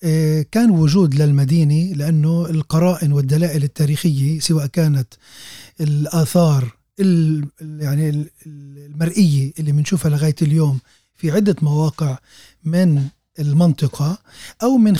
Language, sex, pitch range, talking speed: Arabic, male, 150-175 Hz, 90 wpm